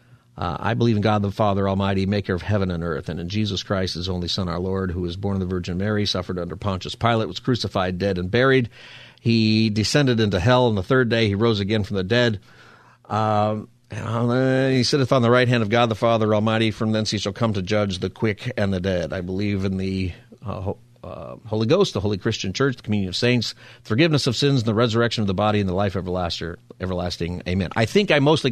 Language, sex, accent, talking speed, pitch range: English, male, American, 235 wpm, 100-130 Hz